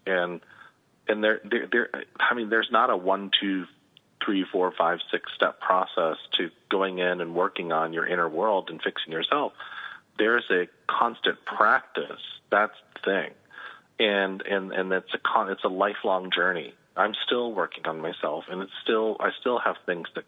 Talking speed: 180 wpm